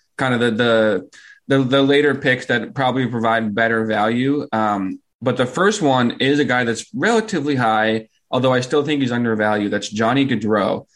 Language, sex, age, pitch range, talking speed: English, male, 20-39, 110-135 Hz, 180 wpm